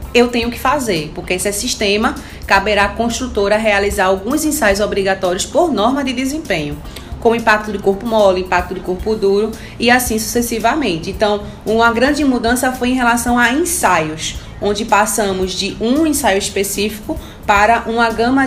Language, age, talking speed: Portuguese, 30-49, 160 wpm